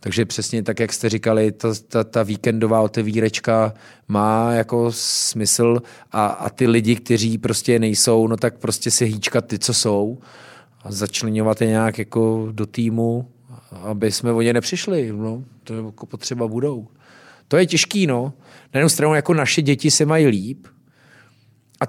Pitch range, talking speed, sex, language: 115-135 Hz, 160 wpm, male, Czech